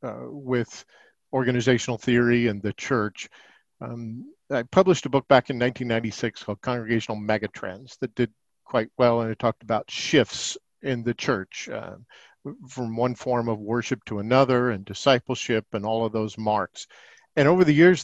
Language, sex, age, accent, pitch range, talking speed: English, male, 50-69, American, 110-135 Hz, 165 wpm